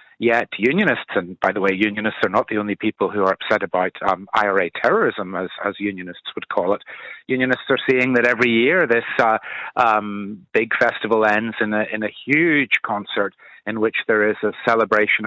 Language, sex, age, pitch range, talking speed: English, male, 40-59, 105-115 Hz, 195 wpm